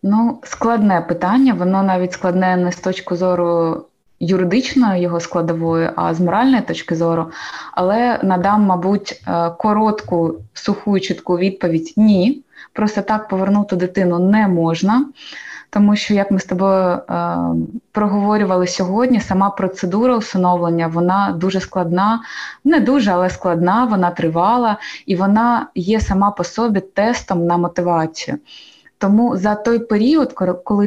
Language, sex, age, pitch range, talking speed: Ukrainian, female, 20-39, 175-215 Hz, 130 wpm